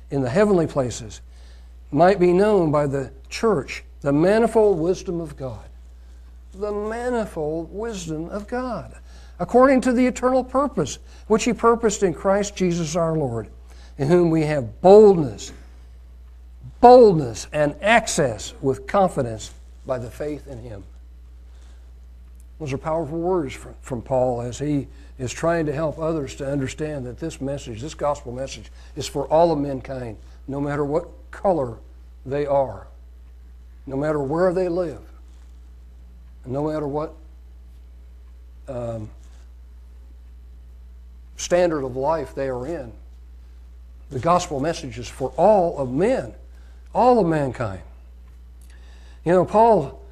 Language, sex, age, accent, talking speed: English, male, 60-79, American, 130 wpm